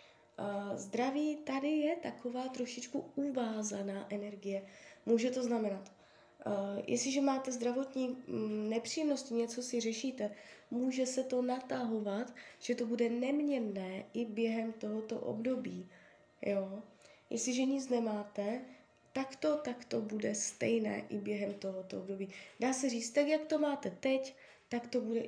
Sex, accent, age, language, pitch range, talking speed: female, native, 20-39, Czech, 200-250 Hz, 130 wpm